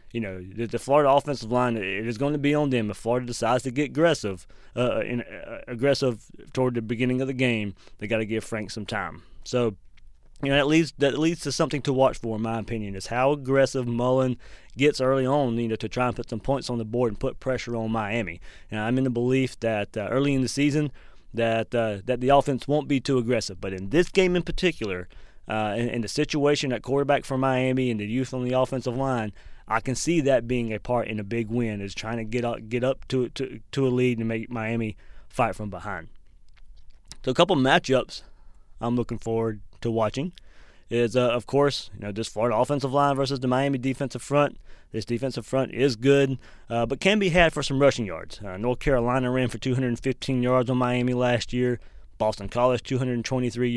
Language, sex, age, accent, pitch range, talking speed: English, male, 30-49, American, 110-135 Hz, 220 wpm